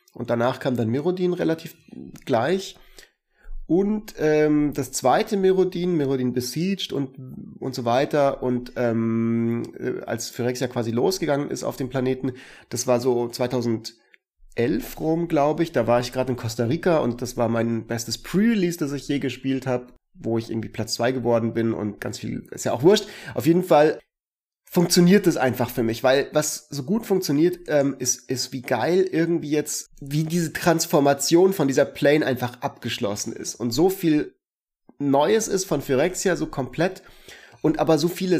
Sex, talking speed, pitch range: male, 170 wpm, 125-165 Hz